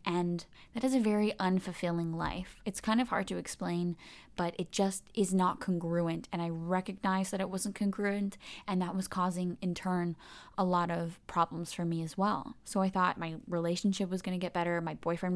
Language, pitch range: English, 175-210 Hz